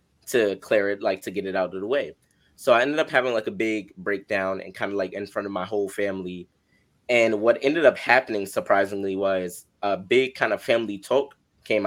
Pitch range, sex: 100-120 Hz, male